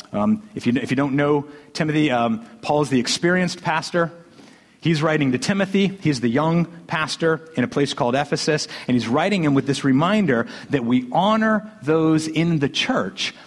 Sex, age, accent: male, 50-69, American